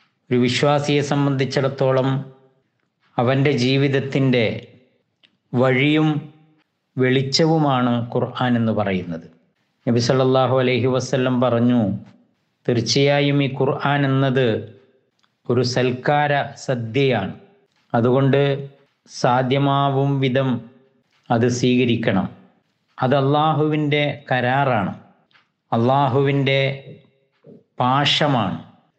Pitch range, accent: 120-145 Hz, native